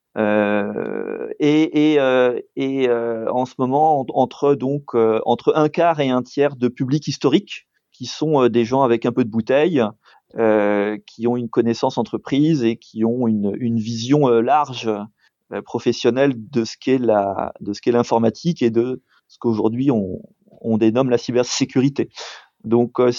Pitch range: 115-150 Hz